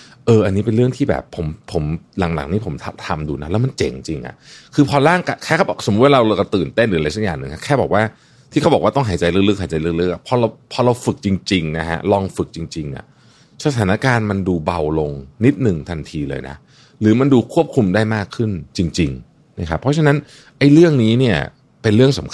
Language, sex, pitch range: Thai, male, 85-125 Hz